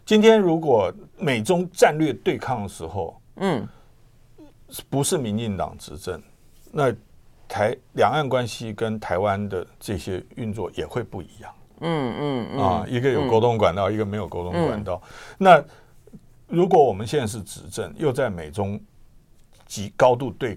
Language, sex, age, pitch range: Chinese, male, 50-69, 95-145 Hz